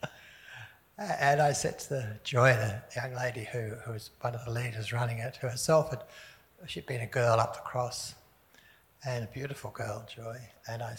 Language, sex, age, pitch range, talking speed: English, male, 60-79, 115-135 Hz, 175 wpm